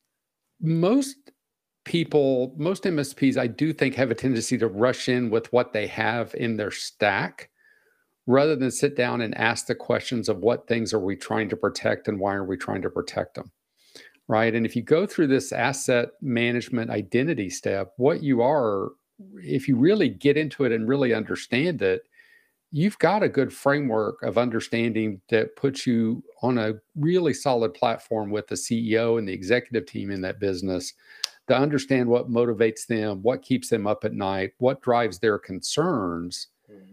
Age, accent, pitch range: 50-69, American, 110-145 Hz